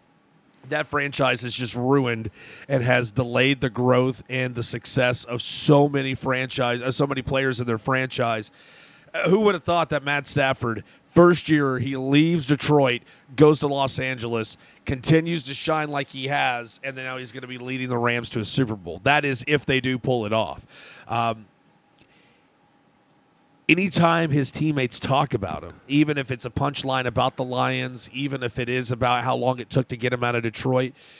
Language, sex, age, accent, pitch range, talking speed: English, male, 30-49, American, 125-140 Hz, 185 wpm